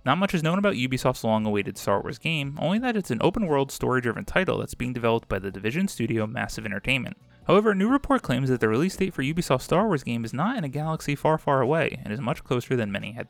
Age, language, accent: 30-49, English, American